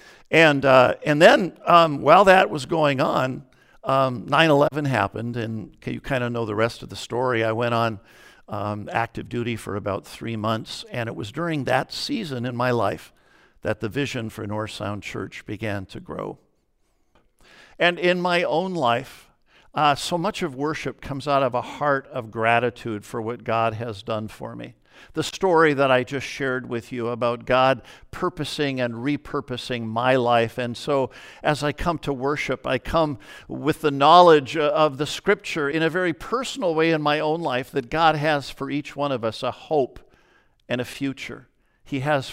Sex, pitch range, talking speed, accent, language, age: male, 115-145 Hz, 185 wpm, American, English, 50-69